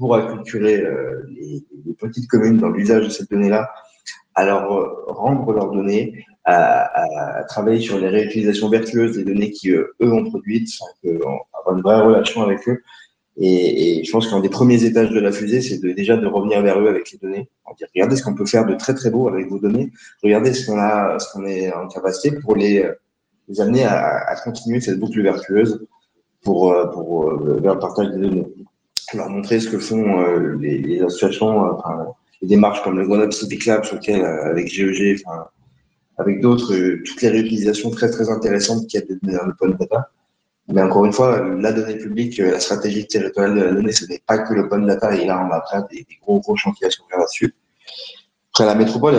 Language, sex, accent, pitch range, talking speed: French, male, French, 100-115 Hz, 205 wpm